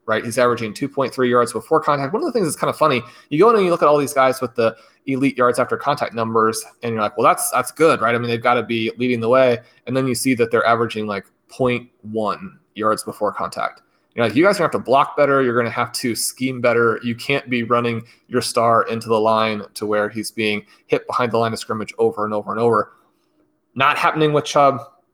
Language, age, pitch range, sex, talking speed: English, 30-49, 115-135 Hz, male, 255 wpm